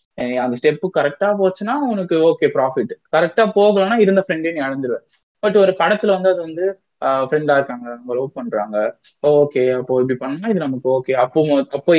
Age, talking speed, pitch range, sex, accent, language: 20-39, 160 wpm, 140-195 Hz, male, native, Tamil